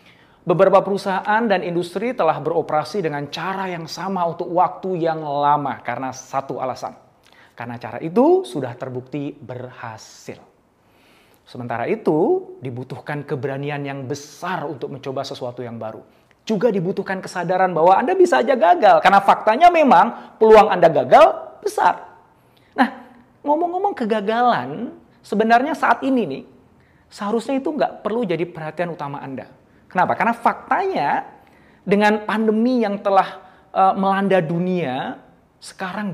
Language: Indonesian